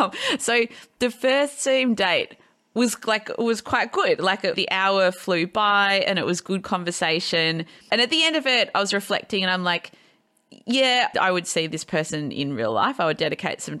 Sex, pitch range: female, 165-235 Hz